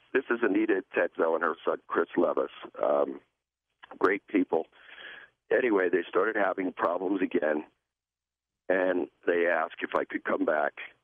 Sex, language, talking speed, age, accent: male, English, 140 wpm, 50-69, American